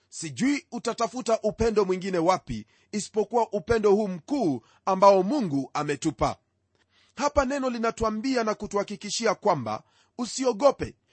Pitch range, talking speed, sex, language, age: 165-245 Hz, 100 wpm, male, Swahili, 40-59